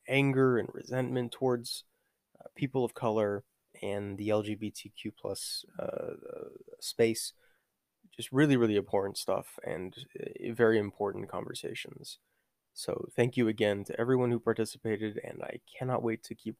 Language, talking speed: English, 140 wpm